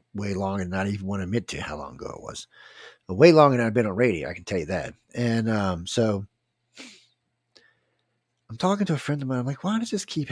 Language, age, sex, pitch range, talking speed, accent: English, 50-69, male, 95-135 Hz, 250 wpm, American